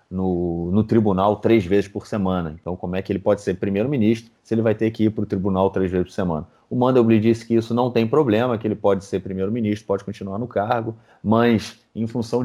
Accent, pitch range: Brazilian, 100-120 Hz